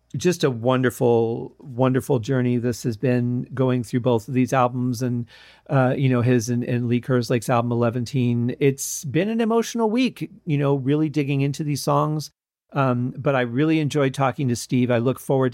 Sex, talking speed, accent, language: male, 185 wpm, American, English